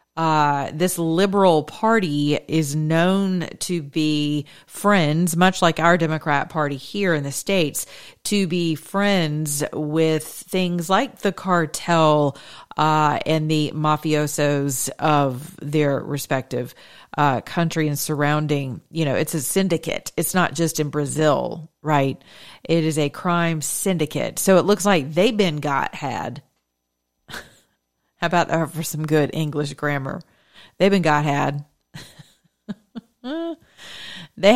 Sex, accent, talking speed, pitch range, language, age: female, American, 130 wpm, 150-180 Hz, English, 40-59